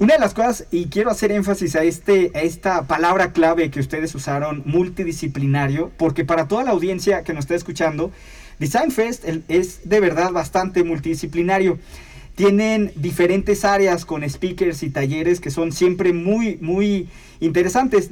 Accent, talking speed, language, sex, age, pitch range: Mexican, 155 wpm, Spanish, male, 40-59, 160-195 Hz